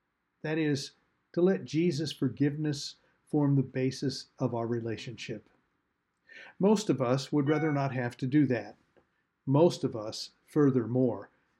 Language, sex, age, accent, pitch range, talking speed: English, male, 50-69, American, 120-155 Hz, 135 wpm